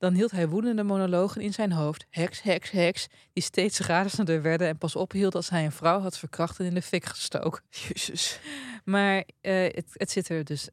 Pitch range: 155-185 Hz